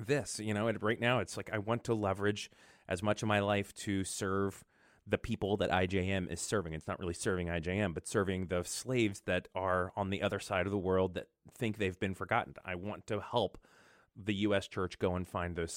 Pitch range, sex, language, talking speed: 95-115 Hz, male, English, 220 wpm